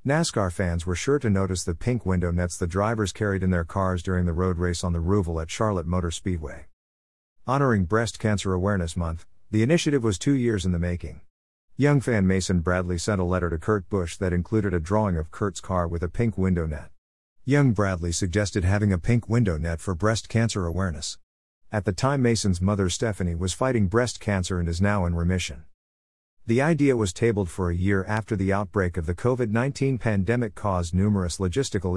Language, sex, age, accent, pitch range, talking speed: English, male, 50-69, American, 85-110 Hz, 200 wpm